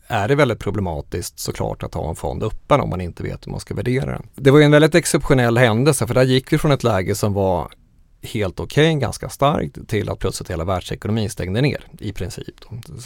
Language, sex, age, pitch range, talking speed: Swedish, male, 30-49, 105-135 Hz, 230 wpm